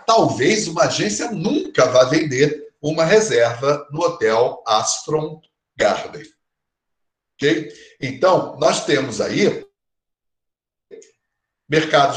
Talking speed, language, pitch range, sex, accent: 85 wpm, Portuguese, 155-210 Hz, male, Brazilian